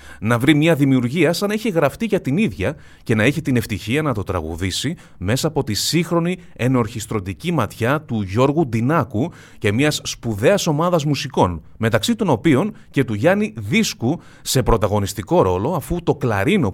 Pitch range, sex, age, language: 110-150 Hz, male, 30-49, Greek